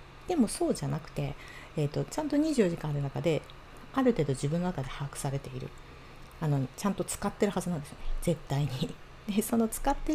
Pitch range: 140-215 Hz